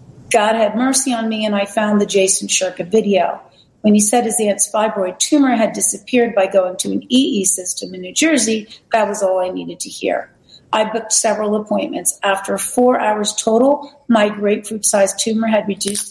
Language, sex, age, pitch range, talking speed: English, female, 40-59, 195-230 Hz, 185 wpm